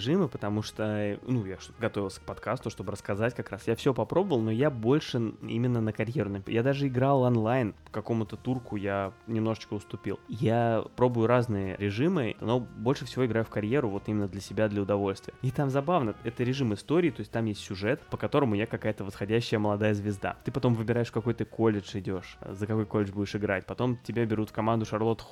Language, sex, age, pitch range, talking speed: Russian, male, 20-39, 105-130 Hz, 195 wpm